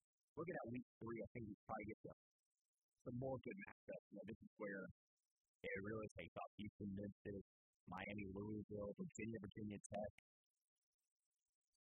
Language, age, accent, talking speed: English, 50-69, American, 150 wpm